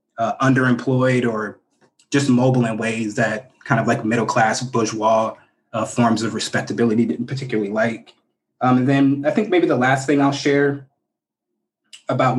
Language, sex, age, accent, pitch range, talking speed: English, male, 20-39, American, 120-135 Hz, 155 wpm